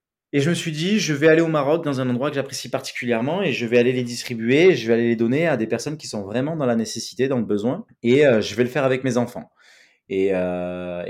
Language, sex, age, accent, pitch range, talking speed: French, male, 20-39, French, 110-135 Hz, 270 wpm